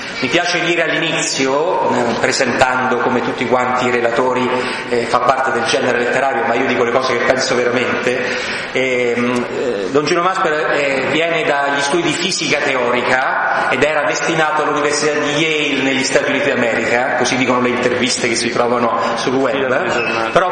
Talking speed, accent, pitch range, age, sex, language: 165 wpm, native, 125-150 Hz, 30-49, male, Italian